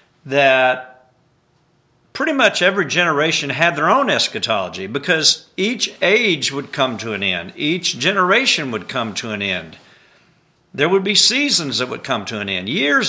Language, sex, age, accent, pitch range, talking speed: English, male, 50-69, American, 120-175 Hz, 160 wpm